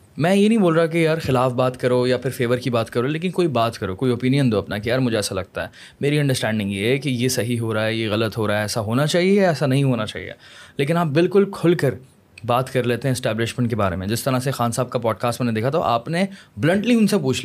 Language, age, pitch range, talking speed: Urdu, 20-39, 115-150 Hz, 280 wpm